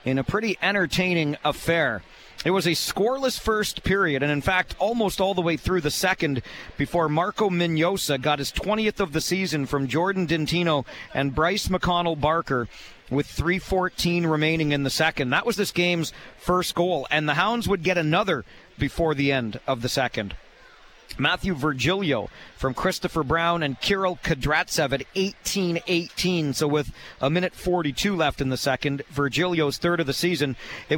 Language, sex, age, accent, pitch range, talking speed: English, male, 40-59, American, 145-185 Hz, 165 wpm